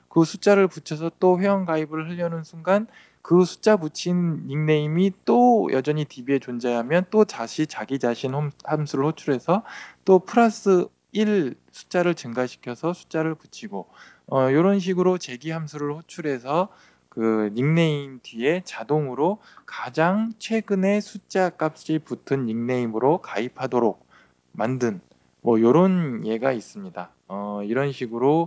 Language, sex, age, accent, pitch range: Korean, male, 20-39, native, 125-175 Hz